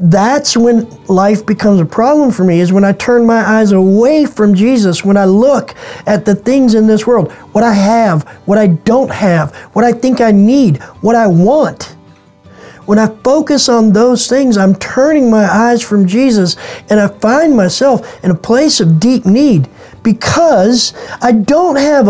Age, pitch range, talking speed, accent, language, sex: 40-59, 195-250 Hz, 180 wpm, American, English, male